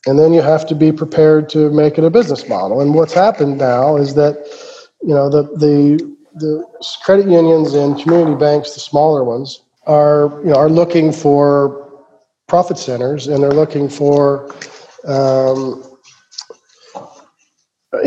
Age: 40-59